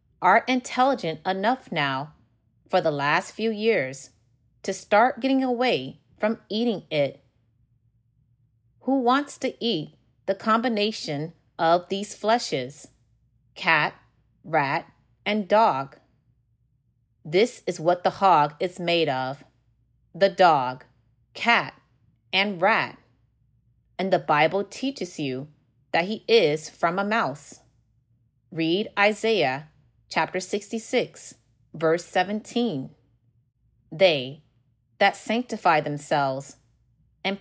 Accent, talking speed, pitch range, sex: American, 105 wpm, 125-205 Hz, female